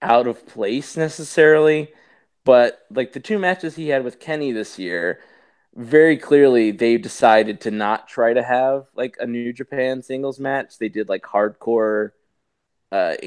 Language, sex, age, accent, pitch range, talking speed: English, male, 20-39, American, 105-140 Hz, 160 wpm